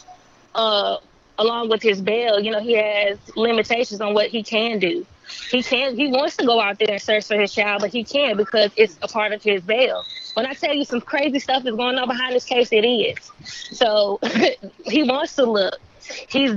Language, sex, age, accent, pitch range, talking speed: English, female, 20-39, American, 215-255 Hz, 215 wpm